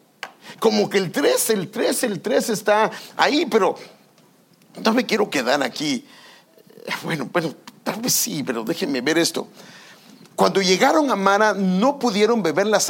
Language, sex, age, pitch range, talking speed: English, male, 50-69, 180-245 Hz, 155 wpm